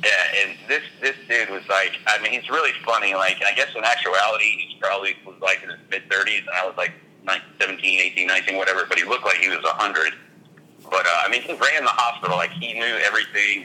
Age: 40-59